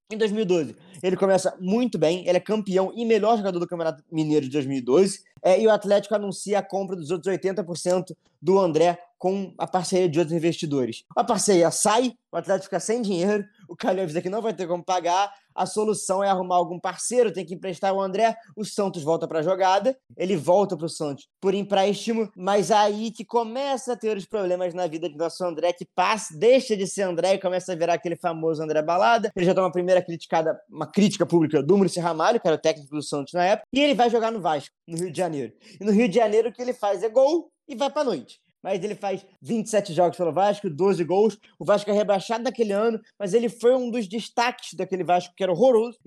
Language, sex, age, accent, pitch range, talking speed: Portuguese, male, 20-39, Brazilian, 175-215 Hz, 225 wpm